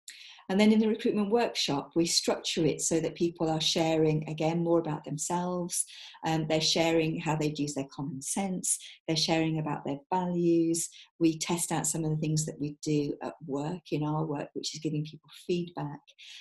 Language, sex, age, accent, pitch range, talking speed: English, female, 40-59, British, 150-170 Hz, 190 wpm